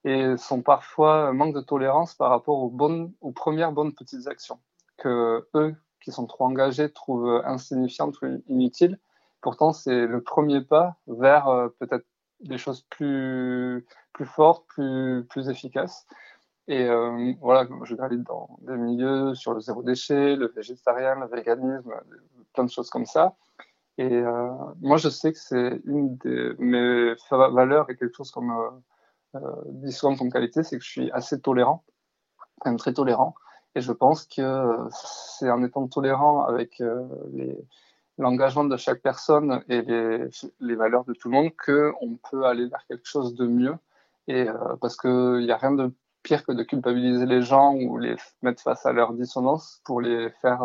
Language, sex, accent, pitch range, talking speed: French, male, French, 120-140 Hz, 175 wpm